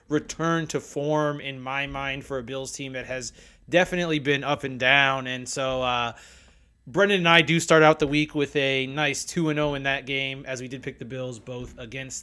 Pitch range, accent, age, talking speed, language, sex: 125-155 Hz, American, 30-49, 220 wpm, English, male